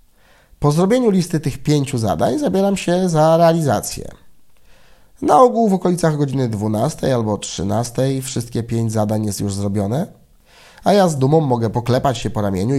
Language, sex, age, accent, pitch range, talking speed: Polish, male, 30-49, native, 105-155 Hz, 155 wpm